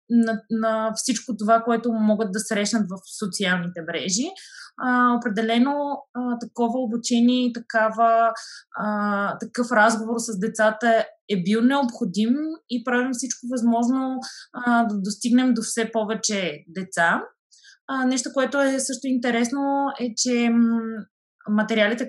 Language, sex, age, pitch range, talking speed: Bulgarian, female, 20-39, 220-250 Hz, 120 wpm